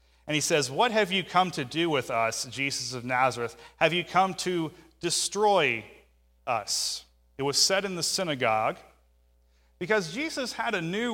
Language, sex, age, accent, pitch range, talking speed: English, male, 30-49, American, 110-170 Hz, 165 wpm